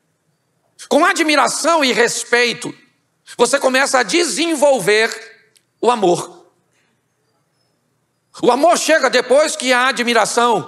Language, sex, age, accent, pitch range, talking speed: Portuguese, male, 50-69, Brazilian, 175-240 Hz, 95 wpm